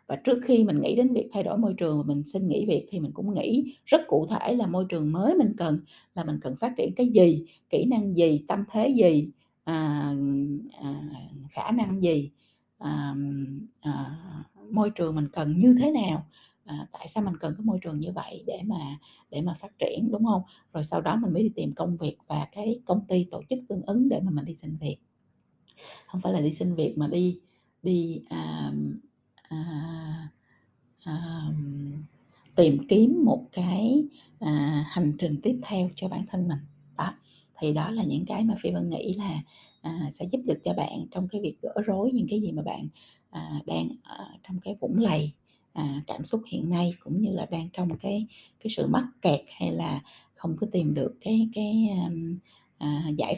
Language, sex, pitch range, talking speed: Vietnamese, female, 150-210 Hz, 190 wpm